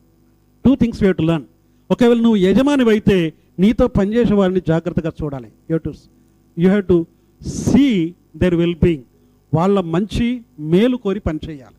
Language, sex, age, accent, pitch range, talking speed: Telugu, male, 50-69, native, 160-220 Hz, 145 wpm